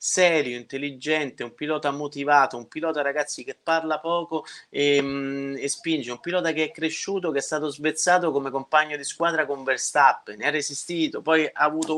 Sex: male